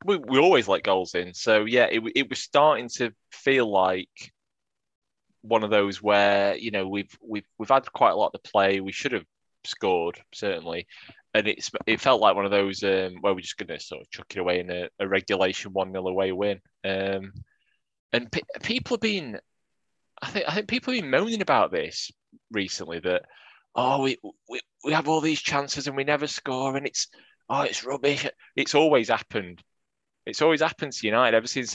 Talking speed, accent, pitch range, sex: 200 wpm, British, 95-140 Hz, male